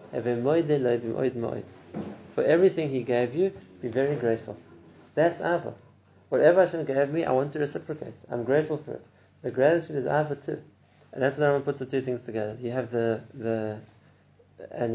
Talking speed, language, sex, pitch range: 165 wpm, English, male, 115-140 Hz